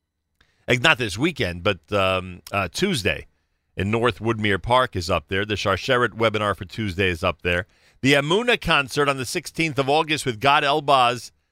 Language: English